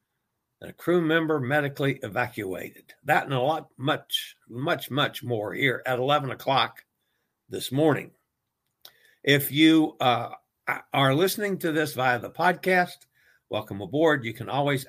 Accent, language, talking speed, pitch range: American, English, 135 wpm, 120-150 Hz